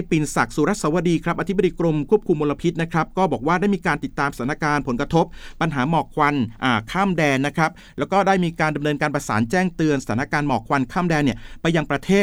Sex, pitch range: male, 130-170 Hz